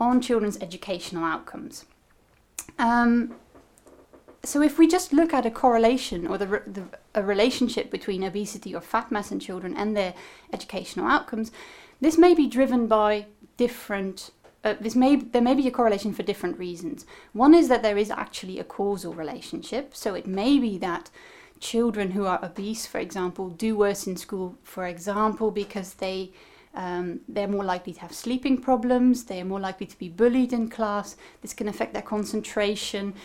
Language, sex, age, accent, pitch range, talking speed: English, female, 30-49, British, 195-250 Hz, 170 wpm